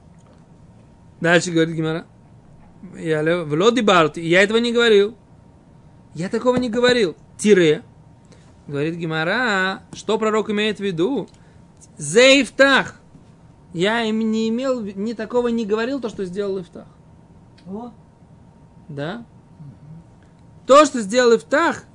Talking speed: 110 wpm